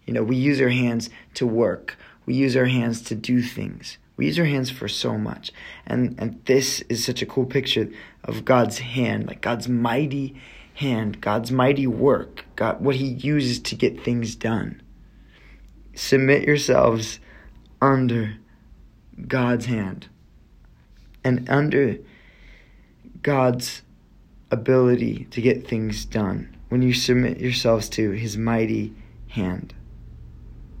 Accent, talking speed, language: American, 135 wpm, English